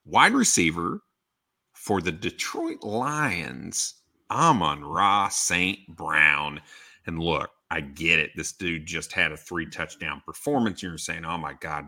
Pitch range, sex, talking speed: 85-120 Hz, male, 135 wpm